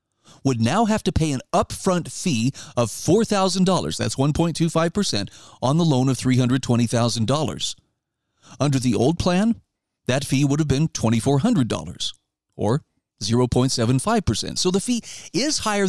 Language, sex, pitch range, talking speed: English, male, 125-175 Hz, 130 wpm